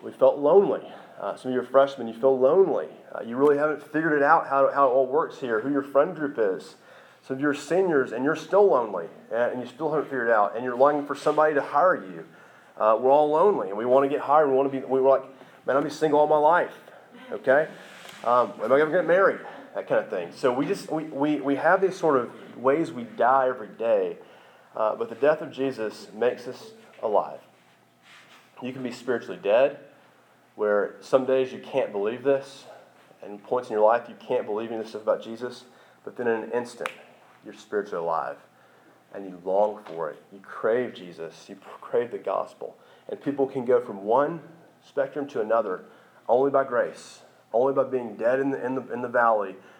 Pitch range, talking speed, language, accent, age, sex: 115-145 Hz, 220 wpm, English, American, 30-49, male